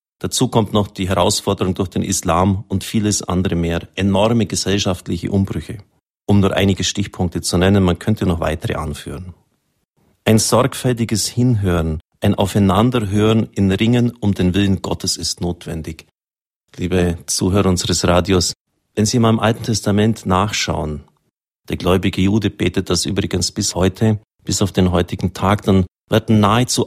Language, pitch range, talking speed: German, 90-105 Hz, 145 wpm